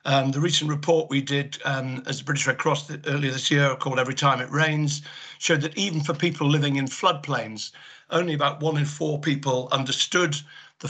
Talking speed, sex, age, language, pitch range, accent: 200 wpm, male, 50-69, English, 135-155 Hz, British